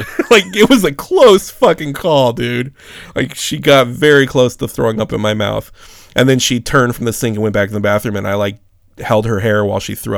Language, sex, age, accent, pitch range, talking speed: English, male, 30-49, American, 100-120 Hz, 240 wpm